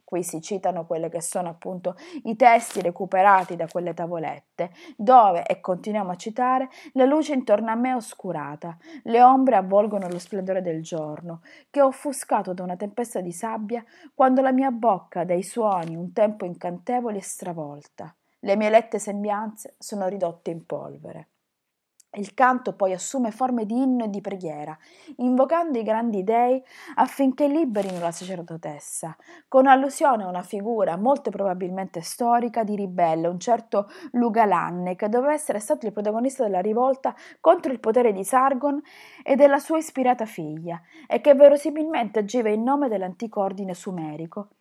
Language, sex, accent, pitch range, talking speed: Italian, female, native, 185-260 Hz, 155 wpm